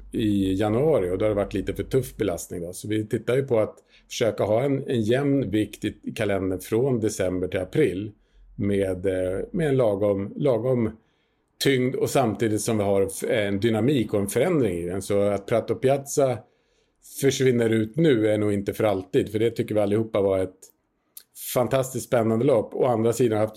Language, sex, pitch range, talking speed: Swedish, male, 100-120 Hz, 190 wpm